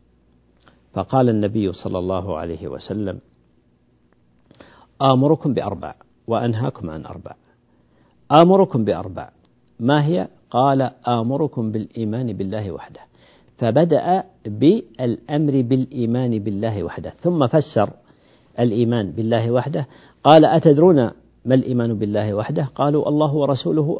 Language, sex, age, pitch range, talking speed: Arabic, male, 50-69, 105-145 Hz, 100 wpm